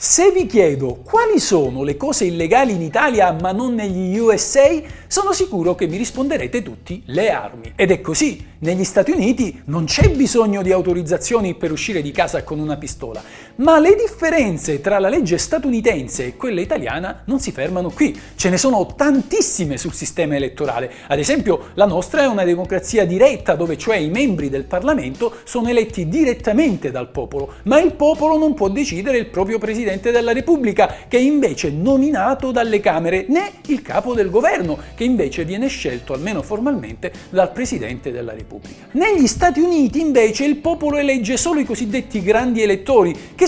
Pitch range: 175-280 Hz